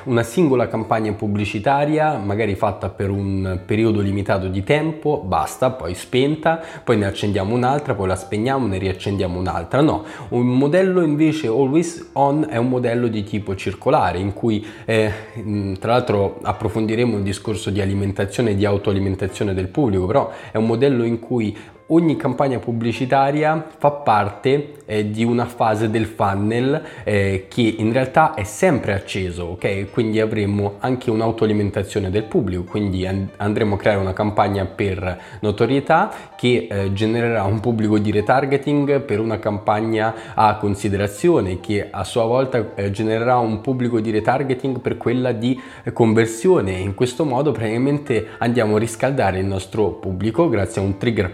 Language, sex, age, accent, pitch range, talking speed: Italian, male, 20-39, native, 100-125 Hz, 155 wpm